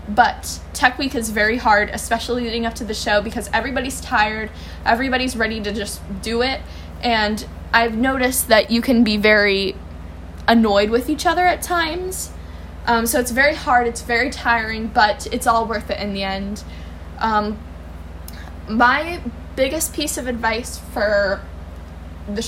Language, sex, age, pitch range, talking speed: English, female, 10-29, 210-245 Hz, 155 wpm